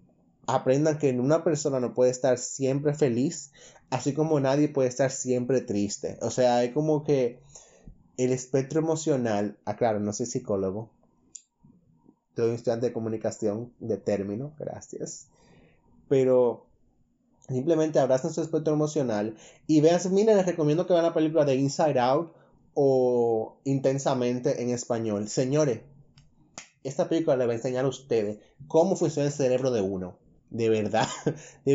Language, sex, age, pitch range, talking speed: Spanish, male, 20-39, 120-150 Hz, 145 wpm